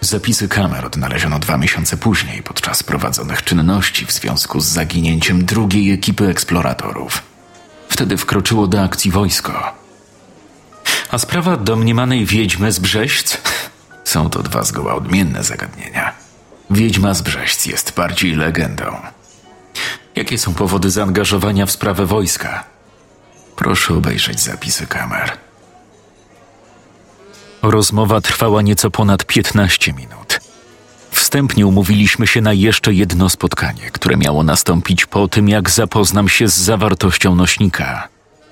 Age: 40-59